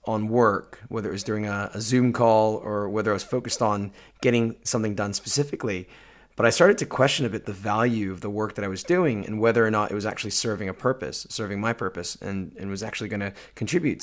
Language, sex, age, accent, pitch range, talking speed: English, male, 30-49, American, 100-120 Hz, 240 wpm